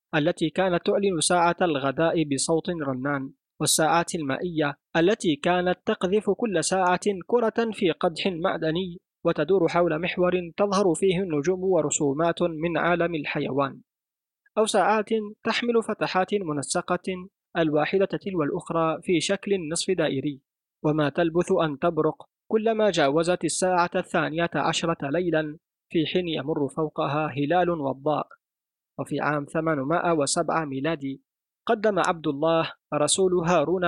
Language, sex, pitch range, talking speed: Arabic, male, 155-190 Hz, 115 wpm